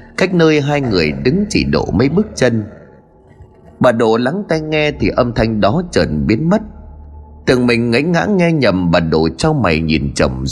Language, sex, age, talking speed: Vietnamese, male, 30-49, 195 wpm